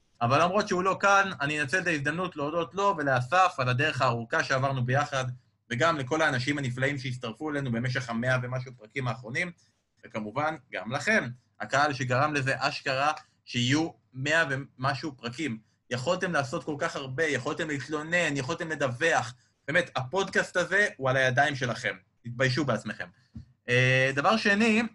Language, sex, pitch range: Hebrew, male, 125-180 Hz